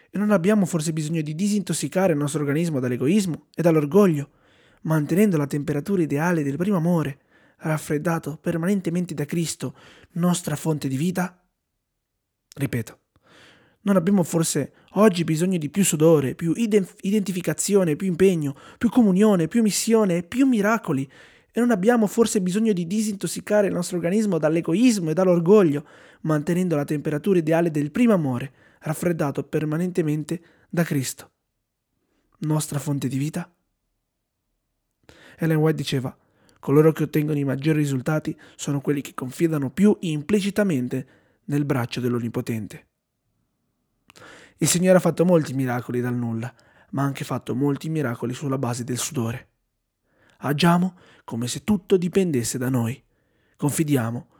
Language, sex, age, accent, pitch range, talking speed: Italian, male, 20-39, native, 130-180 Hz, 130 wpm